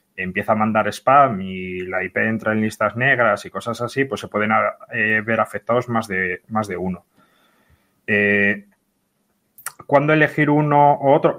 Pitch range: 105-135 Hz